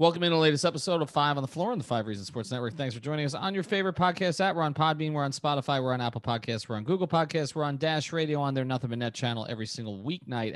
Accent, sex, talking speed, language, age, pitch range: American, male, 295 wpm, English, 30-49, 120-155 Hz